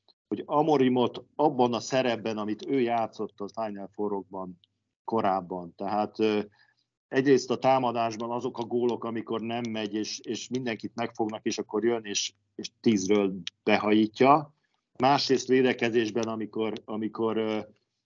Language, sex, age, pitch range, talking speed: Hungarian, male, 50-69, 105-125 Hz, 125 wpm